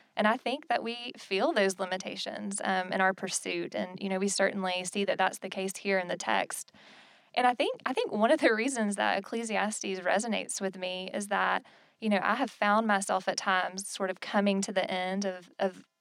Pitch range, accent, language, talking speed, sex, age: 190-210 Hz, American, English, 215 wpm, female, 20-39